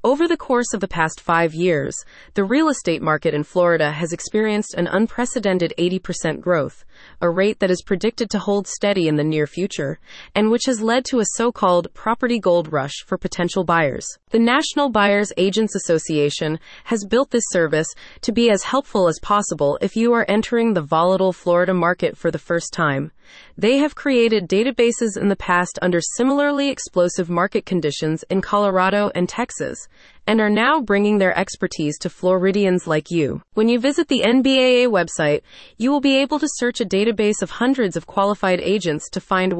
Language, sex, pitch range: English, female, 170-235 Hz